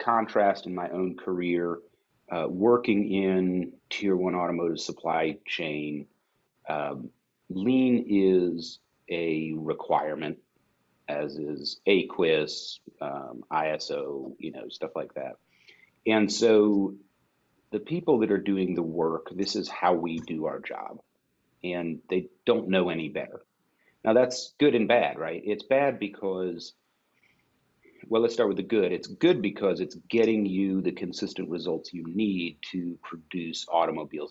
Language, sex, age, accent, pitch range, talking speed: English, male, 40-59, American, 85-105 Hz, 140 wpm